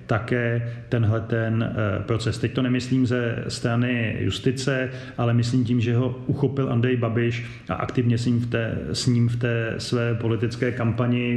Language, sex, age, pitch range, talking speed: Slovak, male, 30-49, 115-130 Hz, 145 wpm